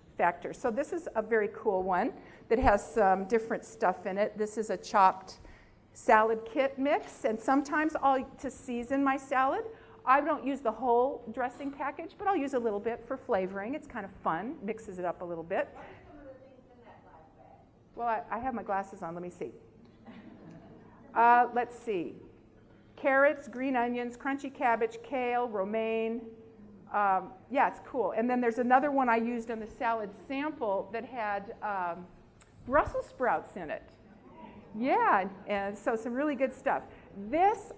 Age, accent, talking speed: 50-69, American, 165 wpm